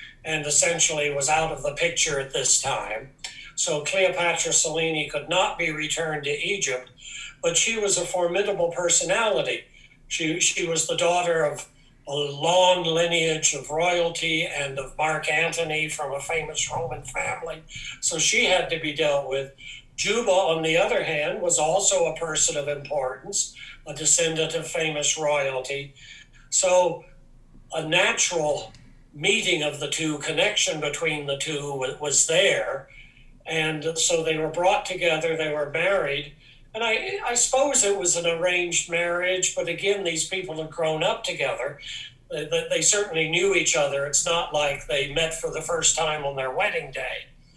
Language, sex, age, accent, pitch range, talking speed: English, male, 60-79, American, 145-175 Hz, 160 wpm